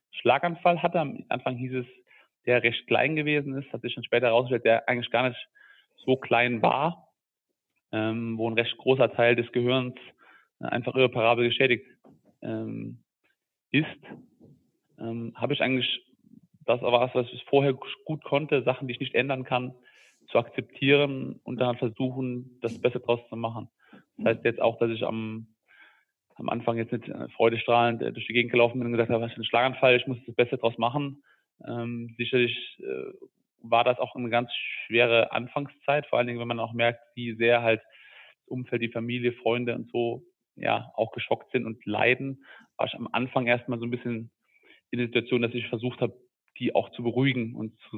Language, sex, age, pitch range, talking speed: German, male, 30-49, 115-130 Hz, 180 wpm